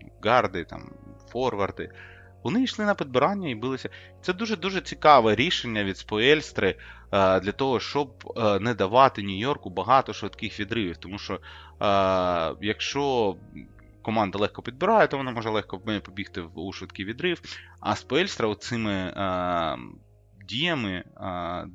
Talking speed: 120 wpm